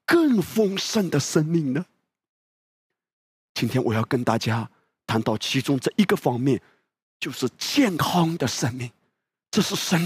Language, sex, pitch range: Chinese, male, 130-195 Hz